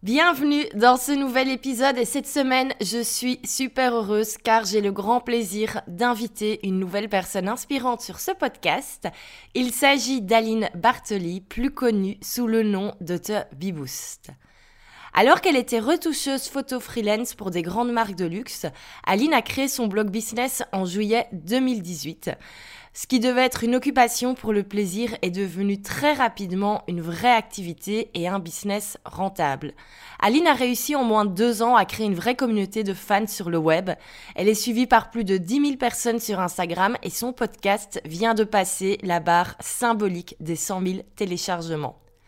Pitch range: 195-250 Hz